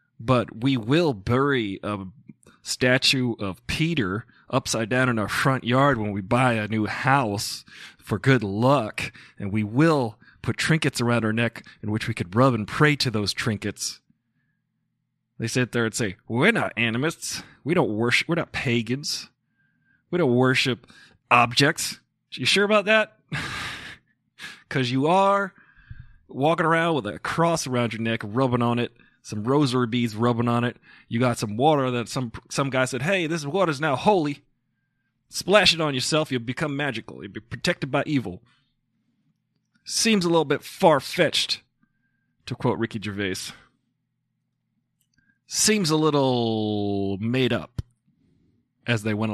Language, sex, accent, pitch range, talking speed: English, male, American, 110-140 Hz, 155 wpm